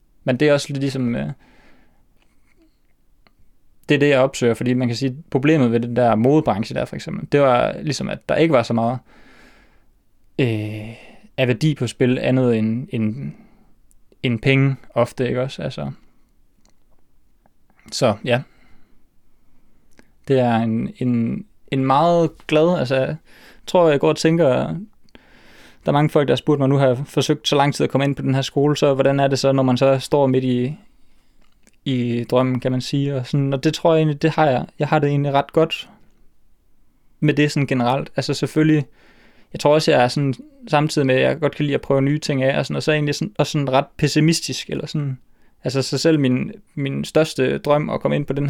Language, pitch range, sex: Danish, 125-150 Hz, male